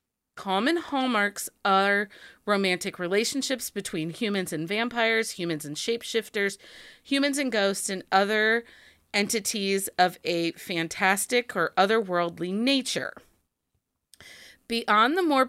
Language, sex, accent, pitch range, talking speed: English, female, American, 180-240 Hz, 105 wpm